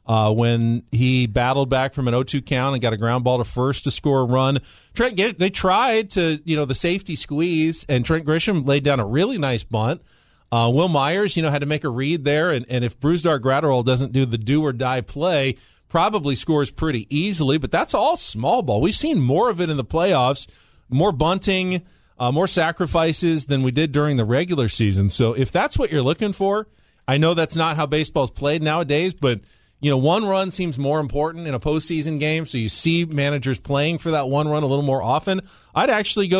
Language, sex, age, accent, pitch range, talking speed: English, male, 40-59, American, 130-165 Hz, 220 wpm